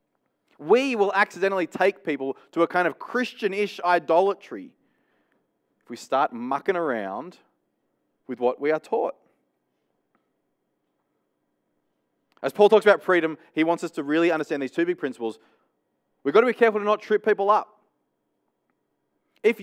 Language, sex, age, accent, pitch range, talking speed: English, male, 20-39, Australian, 175-280 Hz, 145 wpm